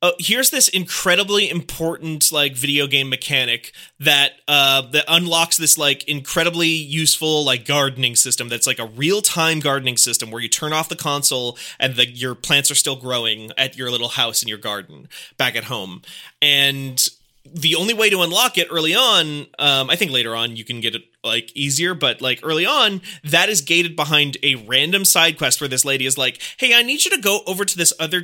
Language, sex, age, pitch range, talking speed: English, male, 20-39, 135-170 Hz, 205 wpm